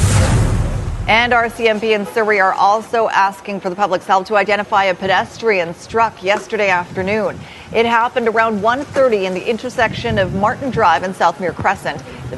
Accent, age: American, 40-59